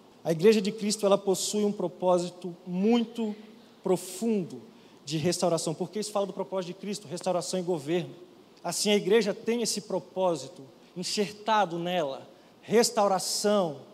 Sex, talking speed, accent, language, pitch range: male, 135 wpm, Brazilian, Portuguese, 180-220 Hz